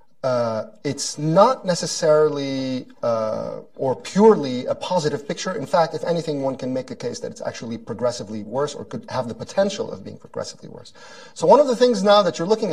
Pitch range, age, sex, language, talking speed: 125-180 Hz, 40-59, male, English, 200 wpm